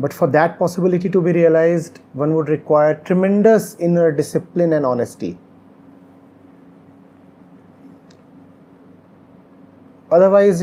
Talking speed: 90 wpm